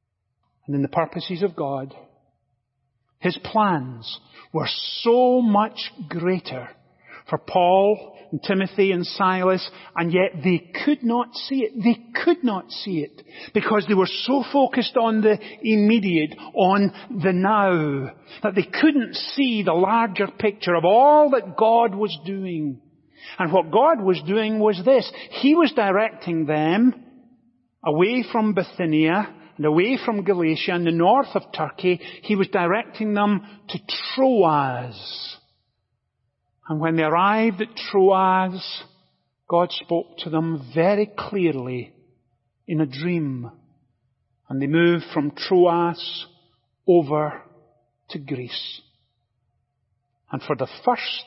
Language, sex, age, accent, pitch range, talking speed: English, male, 40-59, British, 140-215 Hz, 130 wpm